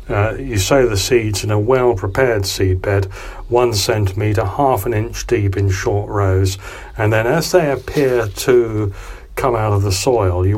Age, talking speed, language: 40-59, 170 wpm, English